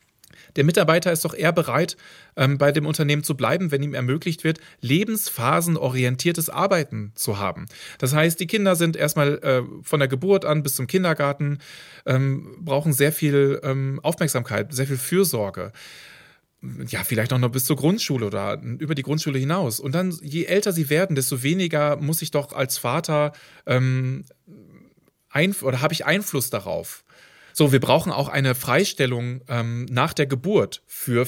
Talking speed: 155 wpm